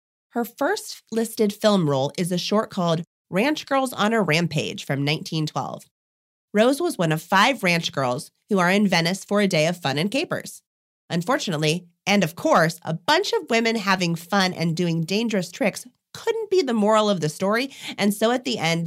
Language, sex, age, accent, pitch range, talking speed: English, female, 30-49, American, 155-215 Hz, 190 wpm